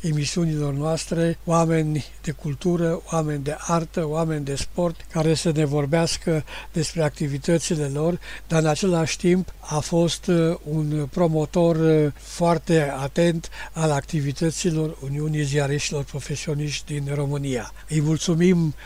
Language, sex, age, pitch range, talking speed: English, male, 60-79, 150-170 Hz, 120 wpm